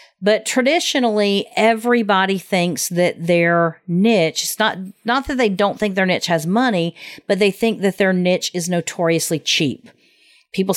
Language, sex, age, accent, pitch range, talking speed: English, female, 50-69, American, 160-215 Hz, 155 wpm